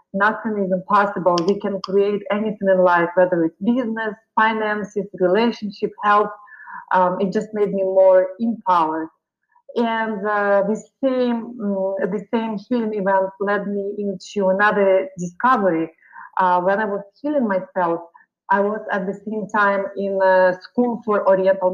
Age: 30-49